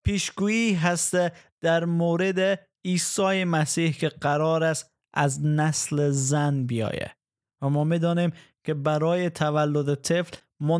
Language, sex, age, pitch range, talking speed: Persian, male, 20-39, 145-170 Hz, 120 wpm